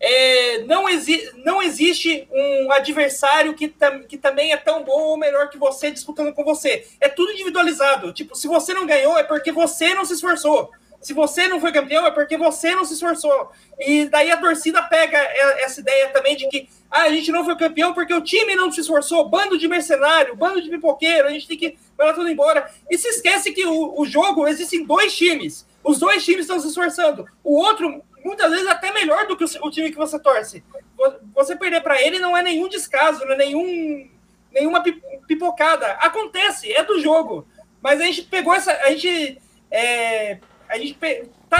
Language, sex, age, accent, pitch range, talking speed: Portuguese, male, 30-49, Brazilian, 275-340 Hz, 200 wpm